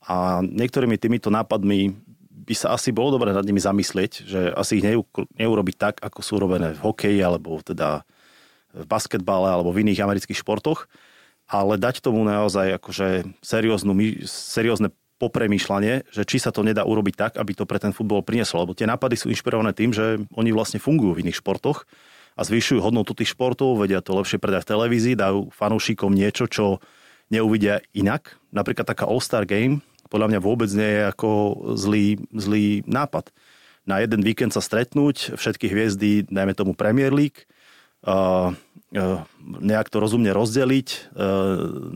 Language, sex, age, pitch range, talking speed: Slovak, male, 30-49, 100-115 Hz, 160 wpm